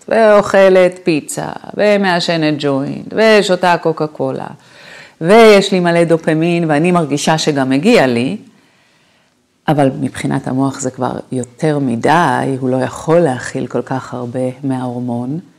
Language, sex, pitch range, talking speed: Hebrew, female, 145-210 Hz, 120 wpm